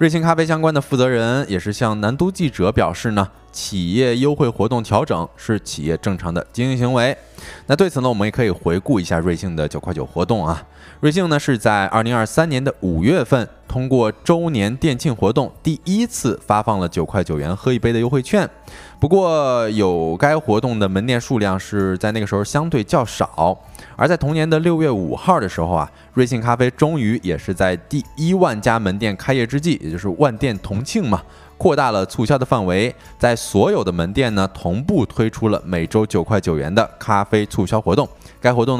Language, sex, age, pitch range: Chinese, male, 20-39, 95-130 Hz